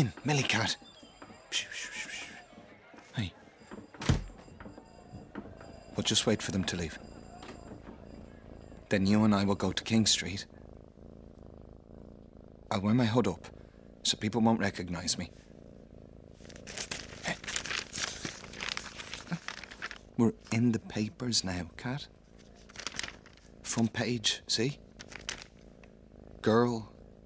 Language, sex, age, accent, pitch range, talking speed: English, male, 30-49, British, 90-110 Hz, 85 wpm